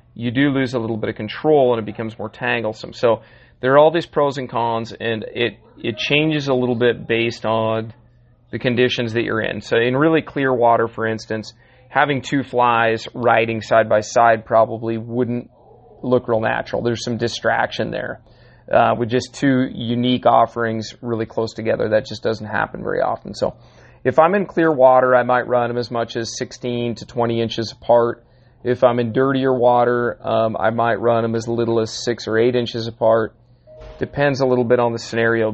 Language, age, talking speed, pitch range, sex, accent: English, 30-49, 195 wpm, 115-125 Hz, male, American